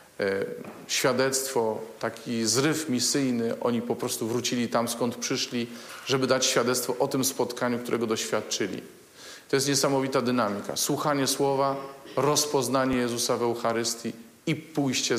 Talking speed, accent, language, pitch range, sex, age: 125 wpm, native, Polish, 115-135 Hz, male, 40-59